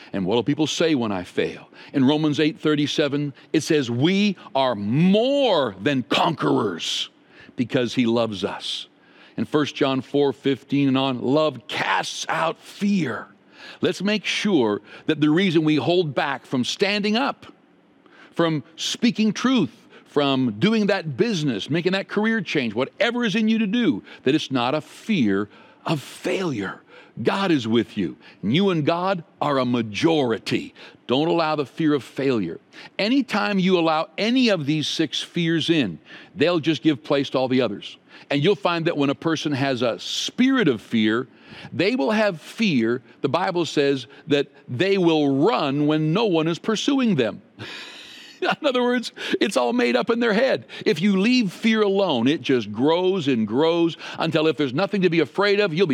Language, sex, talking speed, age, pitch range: English, male, 175 wpm, 60-79, 135-195 Hz